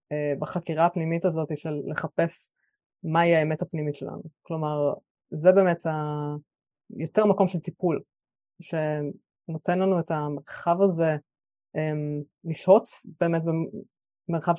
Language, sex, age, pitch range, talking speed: Hebrew, female, 20-39, 150-190 Hz, 105 wpm